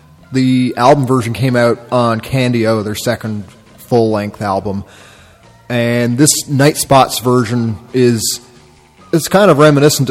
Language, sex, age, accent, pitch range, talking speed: English, male, 30-49, American, 105-125 Hz, 125 wpm